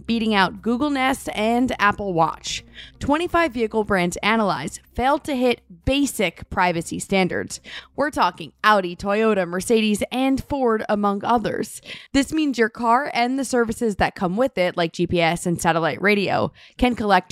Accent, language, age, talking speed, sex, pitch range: American, English, 20-39, 150 wpm, female, 190-265 Hz